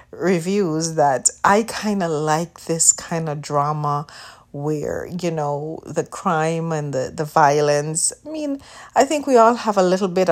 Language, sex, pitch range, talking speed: English, female, 150-175 Hz, 170 wpm